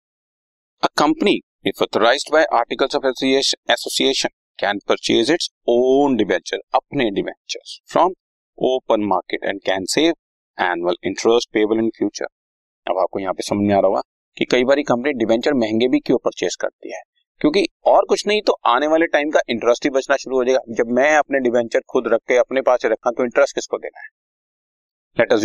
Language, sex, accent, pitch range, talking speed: Hindi, male, native, 110-150 Hz, 175 wpm